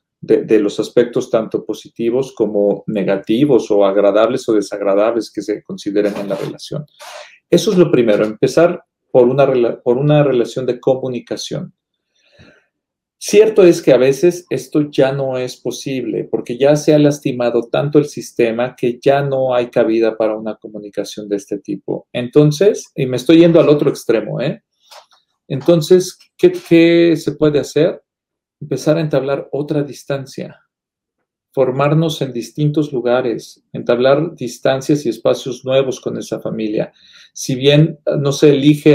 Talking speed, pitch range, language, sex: 150 wpm, 115-150 Hz, Spanish, male